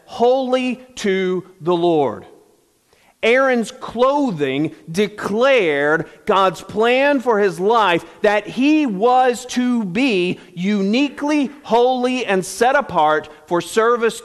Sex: male